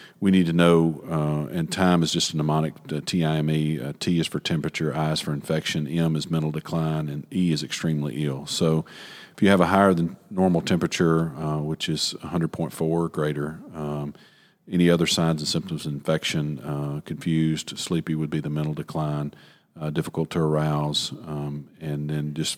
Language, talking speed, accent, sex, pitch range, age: English, 185 wpm, American, male, 75-85 Hz, 40-59